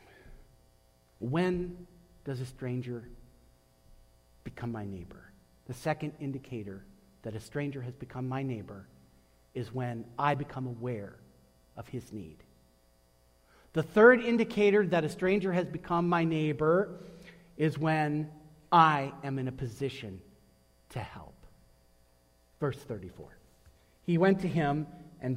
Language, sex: English, male